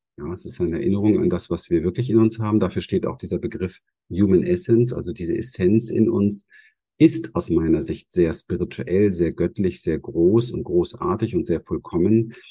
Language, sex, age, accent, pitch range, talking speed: German, male, 50-69, German, 90-135 Hz, 190 wpm